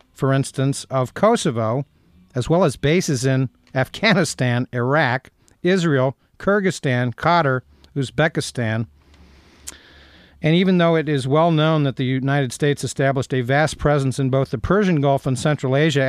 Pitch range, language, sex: 125-155 Hz, English, male